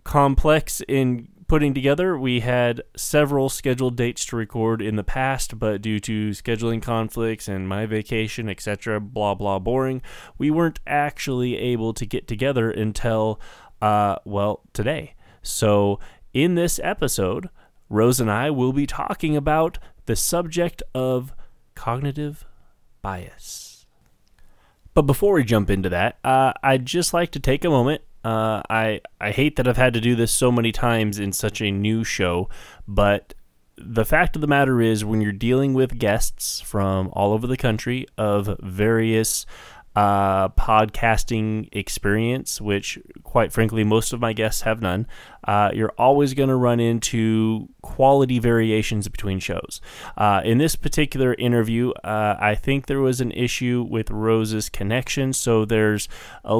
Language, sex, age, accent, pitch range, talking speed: English, male, 20-39, American, 105-130 Hz, 155 wpm